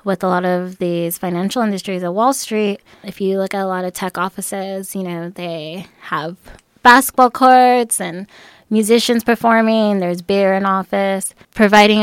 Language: English